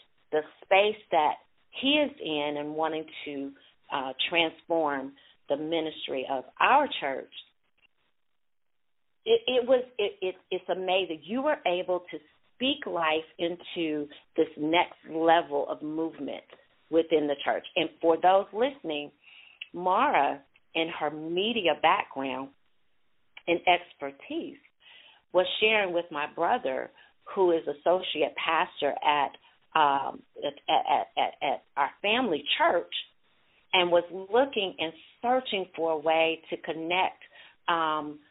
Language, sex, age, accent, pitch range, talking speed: English, female, 40-59, American, 155-190 Hz, 120 wpm